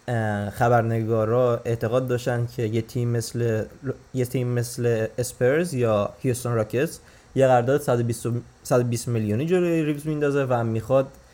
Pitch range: 115-135 Hz